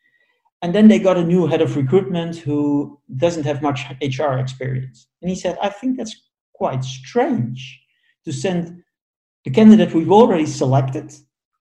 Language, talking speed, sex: English, 155 wpm, male